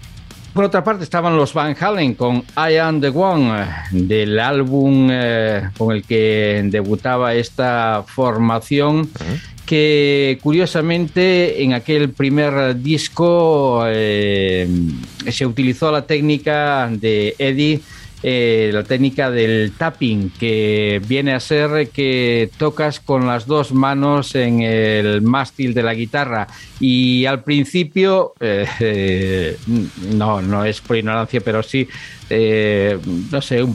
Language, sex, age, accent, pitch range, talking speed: Spanish, male, 50-69, Spanish, 110-140 Hz, 125 wpm